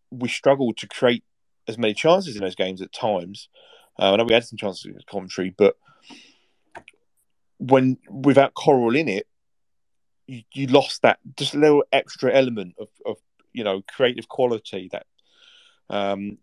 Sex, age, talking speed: male, 30-49, 160 wpm